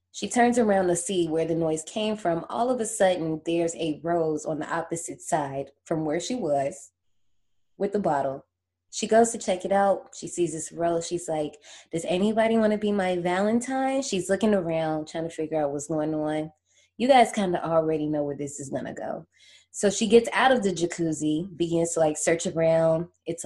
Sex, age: female, 20-39